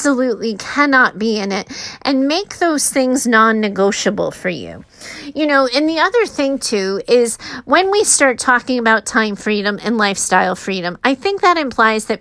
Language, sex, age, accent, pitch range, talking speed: English, female, 30-49, American, 220-285 Hz, 170 wpm